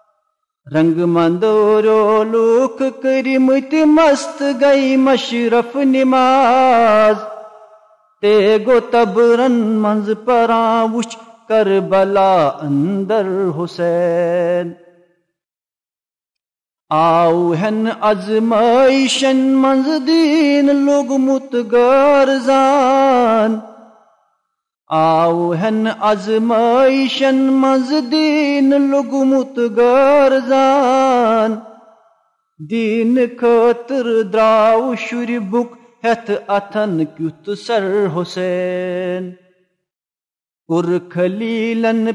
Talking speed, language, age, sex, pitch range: 55 wpm, Urdu, 50-69, male, 215-265 Hz